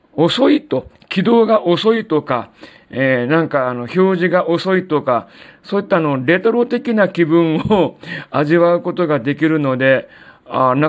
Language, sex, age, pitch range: Japanese, male, 40-59, 145-180 Hz